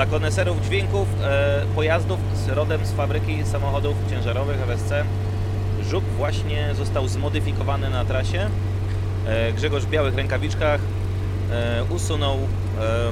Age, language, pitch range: 30-49, Polish, 95-105 Hz